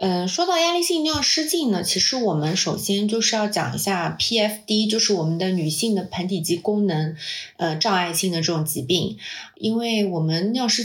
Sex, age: female, 30-49